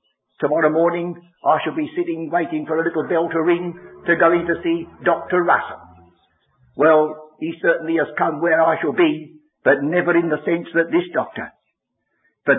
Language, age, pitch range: English, 60-79, 145-230 Hz